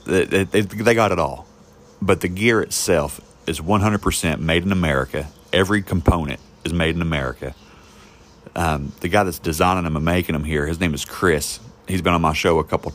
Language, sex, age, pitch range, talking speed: English, male, 40-59, 75-90 Hz, 185 wpm